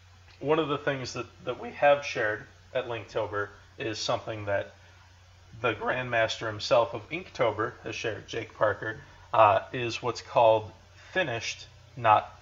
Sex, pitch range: male, 95-125 Hz